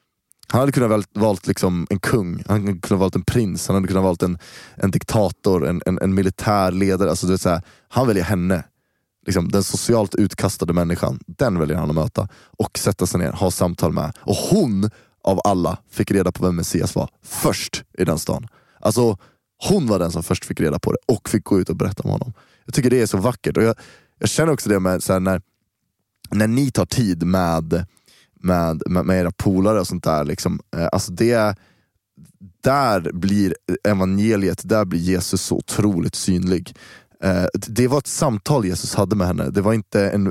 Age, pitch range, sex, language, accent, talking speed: 20-39, 90-110 Hz, male, Swedish, native, 200 wpm